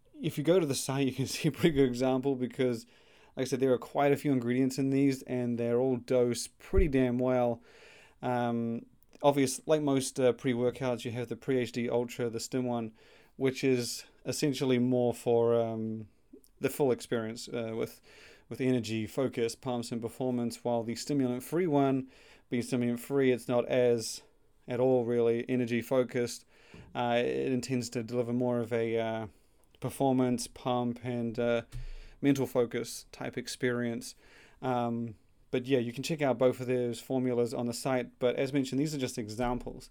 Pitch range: 120-130 Hz